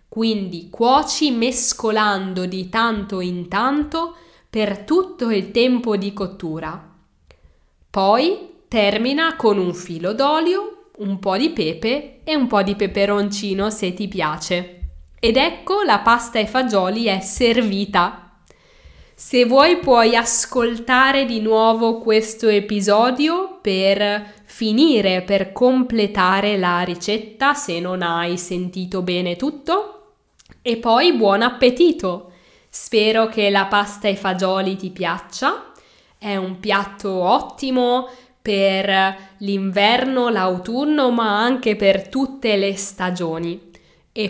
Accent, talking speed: native, 115 wpm